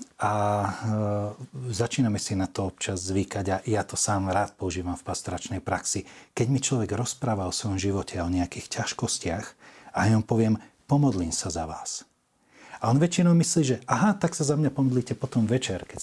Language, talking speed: Slovak, 185 wpm